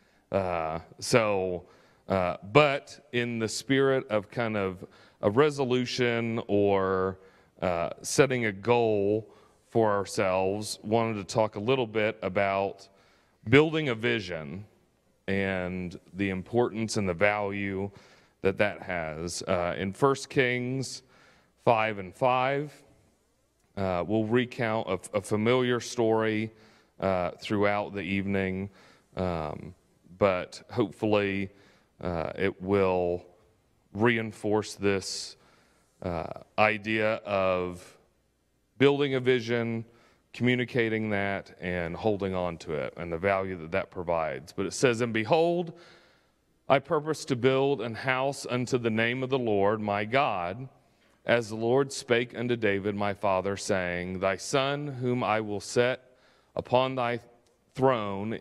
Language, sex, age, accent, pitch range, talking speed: English, male, 30-49, American, 95-125 Hz, 125 wpm